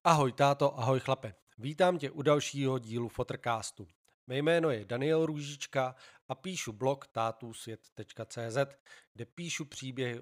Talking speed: 130 wpm